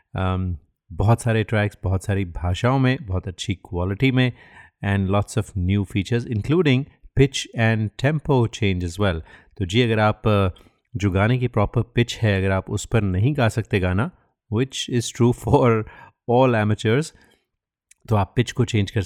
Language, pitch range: Hindi, 95-120 Hz